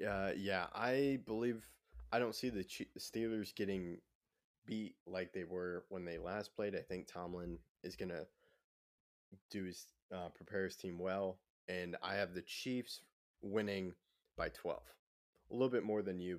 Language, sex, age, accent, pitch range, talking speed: English, male, 20-39, American, 90-110 Hz, 165 wpm